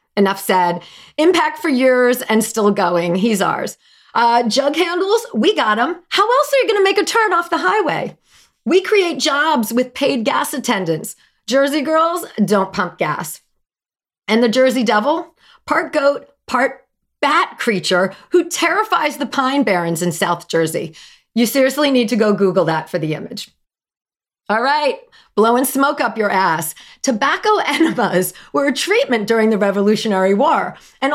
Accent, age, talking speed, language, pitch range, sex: American, 40-59, 160 wpm, English, 195-295 Hz, female